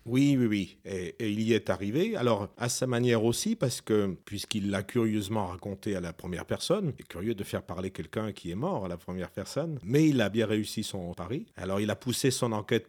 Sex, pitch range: male, 85-115 Hz